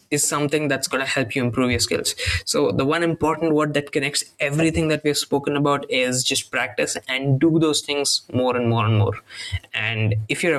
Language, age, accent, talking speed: English, 20-39, Indian, 210 wpm